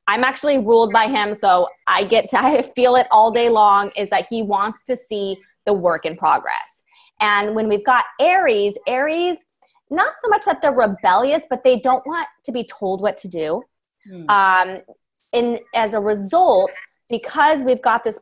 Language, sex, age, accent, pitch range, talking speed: English, female, 20-39, American, 195-260 Hz, 185 wpm